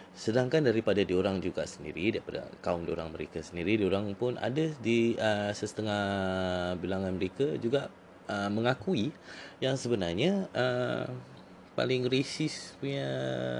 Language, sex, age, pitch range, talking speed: Malay, male, 20-39, 90-125 Hz, 120 wpm